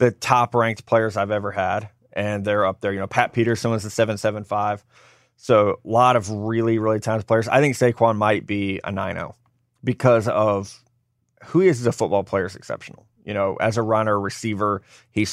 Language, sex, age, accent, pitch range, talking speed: English, male, 20-39, American, 105-125 Hz, 210 wpm